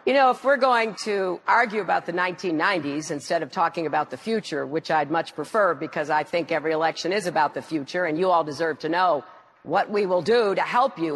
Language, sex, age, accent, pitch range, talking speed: English, female, 50-69, American, 175-250 Hz, 225 wpm